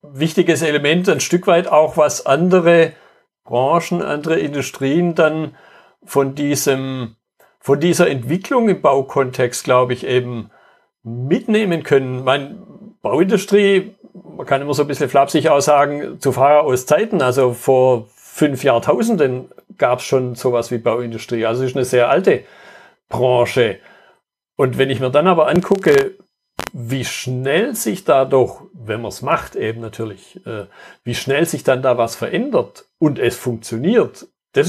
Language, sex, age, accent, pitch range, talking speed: German, male, 60-79, German, 130-180 Hz, 145 wpm